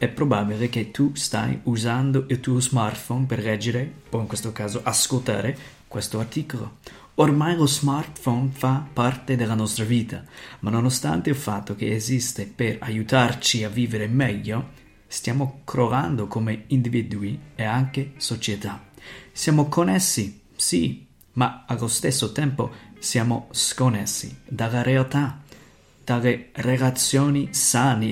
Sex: male